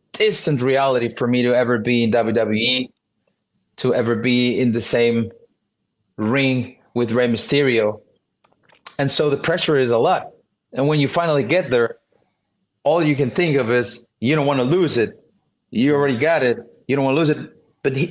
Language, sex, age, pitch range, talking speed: English, male, 30-49, 125-160 Hz, 180 wpm